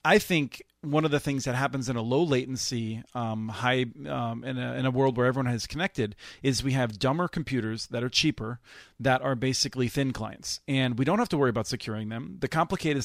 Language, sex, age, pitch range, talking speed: English, male, 40-59, 120-155 Hz, 220 wpm